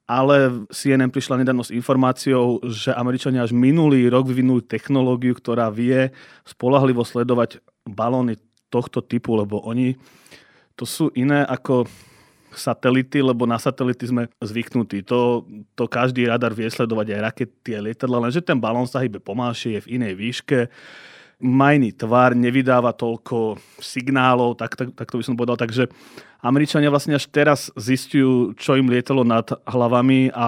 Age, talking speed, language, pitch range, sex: 30-49, 150 wpm, Slovak, 115-130 Hz, male